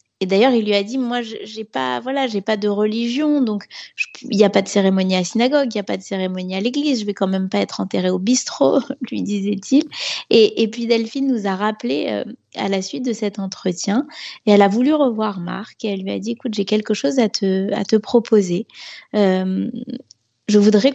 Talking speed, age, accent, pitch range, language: 230 wpm, 20-39, French, 185-230 Hz, French